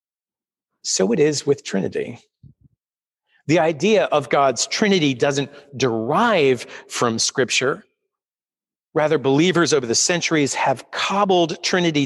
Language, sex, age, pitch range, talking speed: English, male, 40-59, 135-170 Hz, 110 wpm